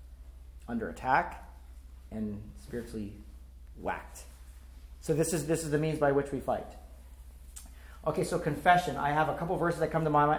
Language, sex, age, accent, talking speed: English, male, 40-59, American, 170 wpm